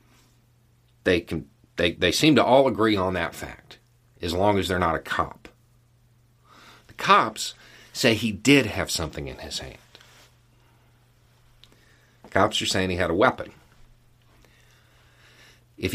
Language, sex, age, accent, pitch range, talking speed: English, male, 50-69, American, 105-120 Hz, 140 wpm